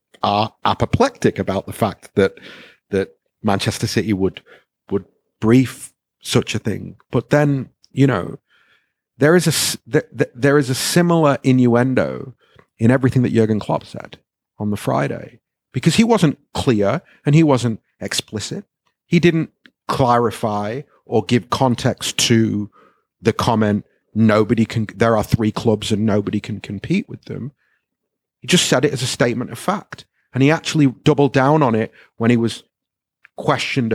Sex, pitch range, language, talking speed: male, 110-145 Hz, English, 150 wpm